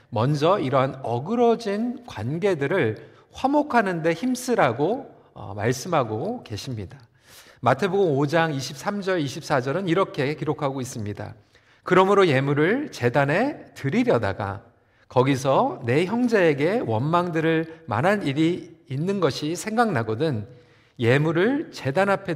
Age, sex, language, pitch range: 40-59, male, Korean, 125-190 Hz